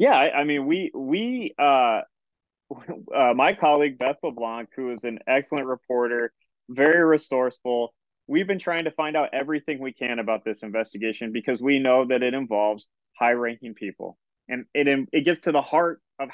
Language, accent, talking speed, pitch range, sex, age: English, American, 175 wpm, 125-150 Hz, male, 20-39